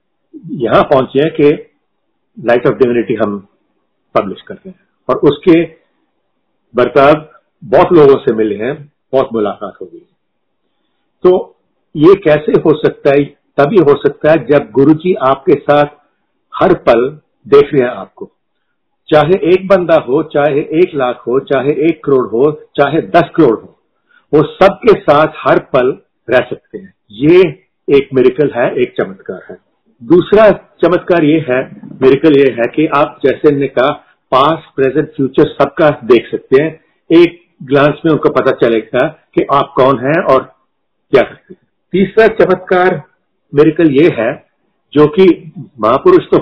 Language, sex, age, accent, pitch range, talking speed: Hindi, male, 50-69, native, 145-220 Hz, 150 wpm